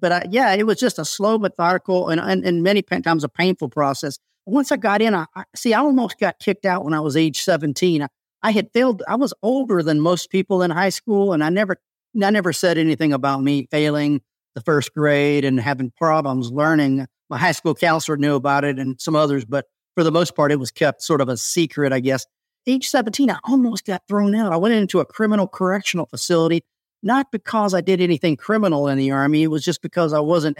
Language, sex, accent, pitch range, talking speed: English, male, American, 145-185 Hz, 230 wpm